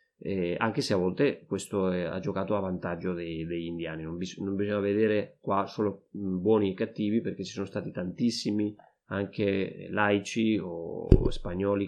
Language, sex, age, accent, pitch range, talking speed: Italian, male, 30-49, native, 100-120 Hz, 150 wpm